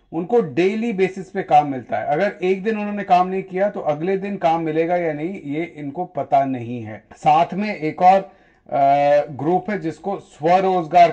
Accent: native